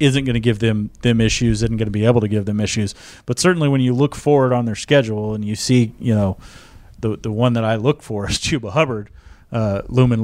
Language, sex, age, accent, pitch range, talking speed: English, male, 30-49, American, 110-125 Hz, 245 wpm